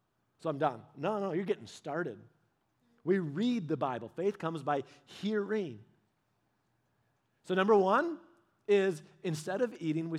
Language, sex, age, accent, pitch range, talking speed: English, male, 40-59, American, 165-210 Hz, 140 wpm